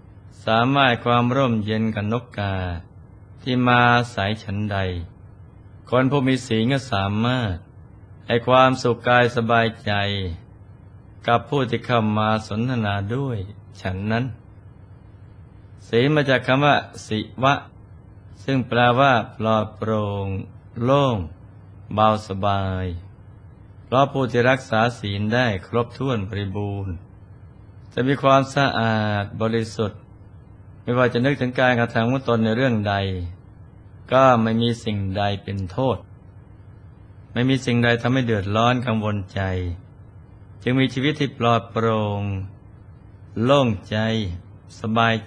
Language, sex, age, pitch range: Thai, male, 20-39, 100-120 Hz